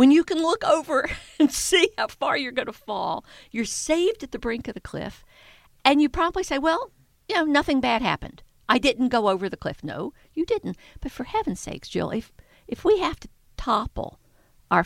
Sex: female